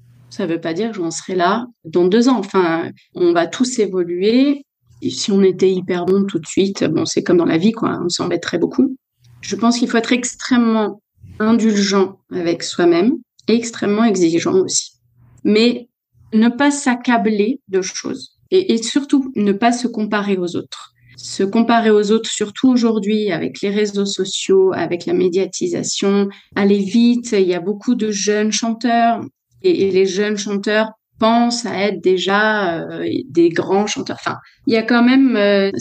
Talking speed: 175 wpm